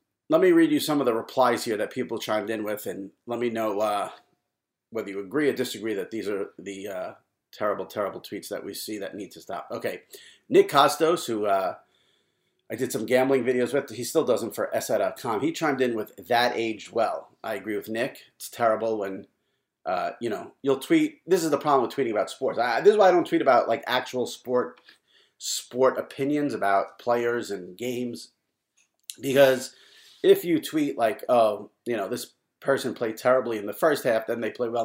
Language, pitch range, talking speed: English, 110-160 Hz, 205 wpm